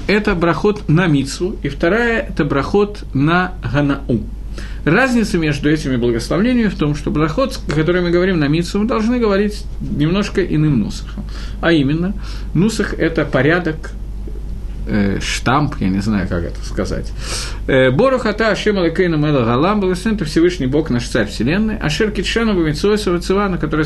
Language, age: Russian, 50-69